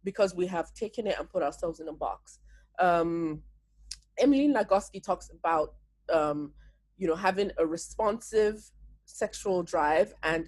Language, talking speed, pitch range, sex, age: English, 145 wpm, 170-230 Hz, female, 20-39